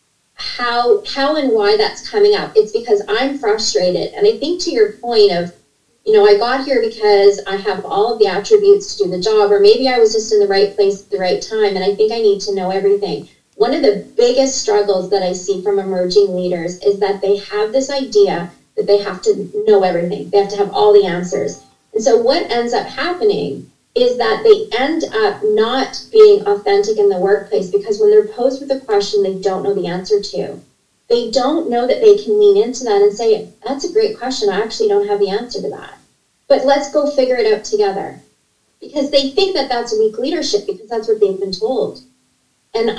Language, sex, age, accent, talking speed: English, female, 30-49, American, 220 wpm